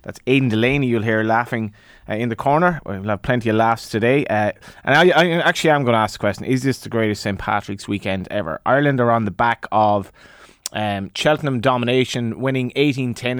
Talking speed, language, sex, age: 205 wpm, English, male, 20-39